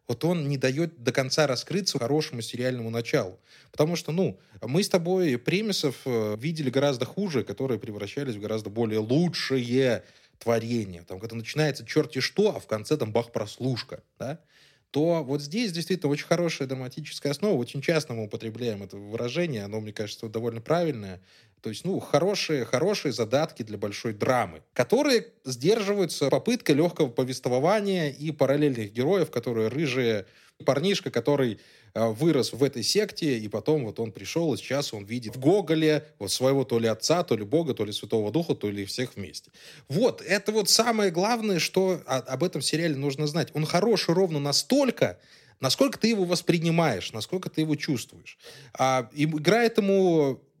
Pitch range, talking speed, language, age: 115-165 Hz, 160 wpm, Russian, 20-39